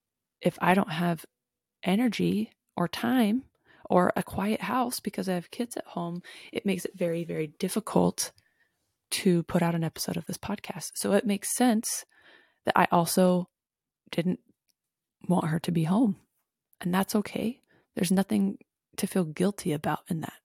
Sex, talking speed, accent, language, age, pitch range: female, 160 wpm, American, English, 20-39, 170-210 Hz